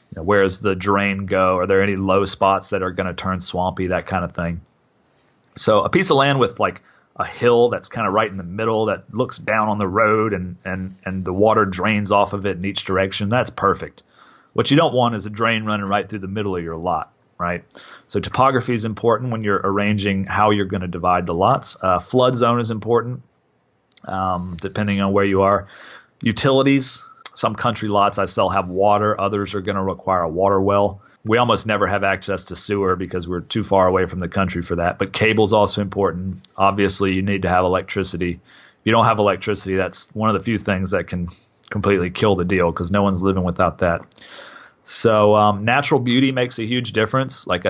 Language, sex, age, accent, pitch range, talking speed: English, male, 40-59, American, 95-110 Hz, 220 wpm